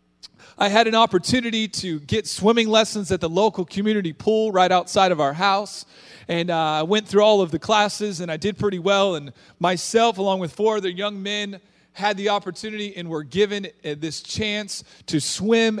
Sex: male